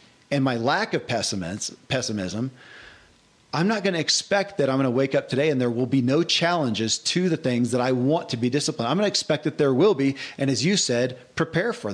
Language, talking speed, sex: English, 235 wpm, male